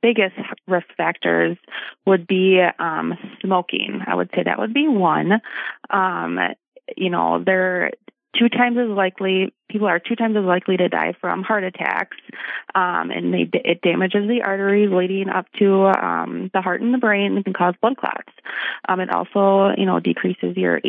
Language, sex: English, female